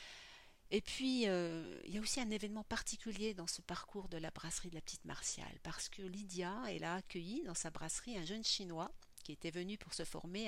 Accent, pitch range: French, 170-220 Hz